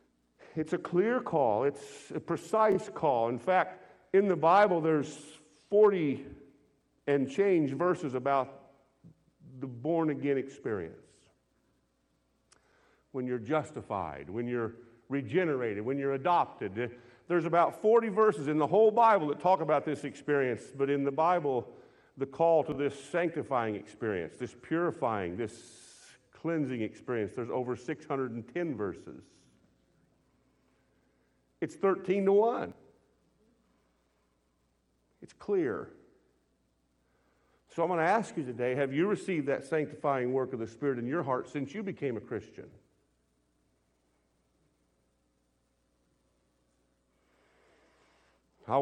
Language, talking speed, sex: English, 115 wpm, male